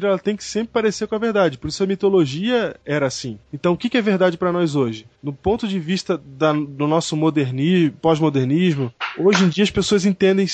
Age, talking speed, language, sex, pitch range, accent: 20-39, 210 wpm, Portuguese, male, 145-205 Hz, Brazilian